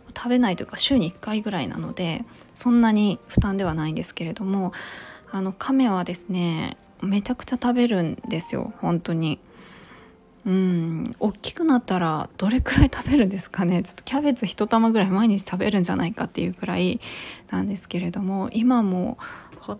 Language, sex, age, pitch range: Japanese, female, 20-39, 175-215 Hz